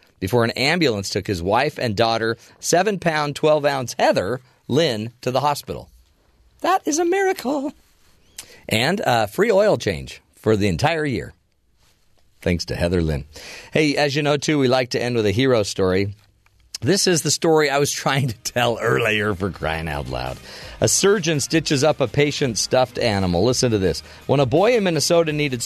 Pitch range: 105-150 Hz